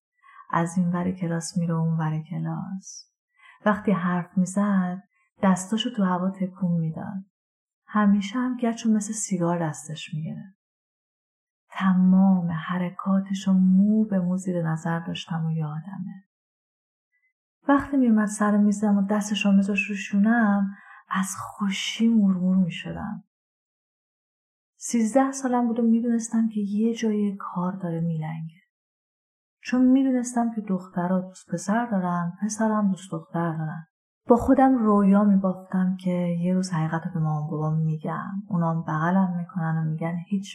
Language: Persian